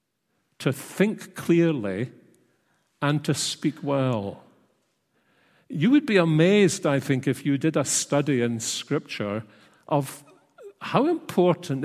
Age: 50-69